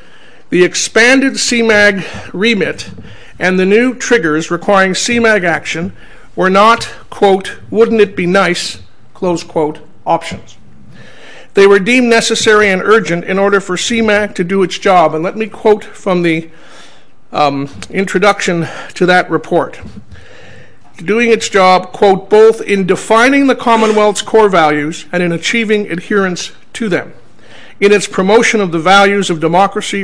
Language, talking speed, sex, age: English, 140 wpm, male, 50-69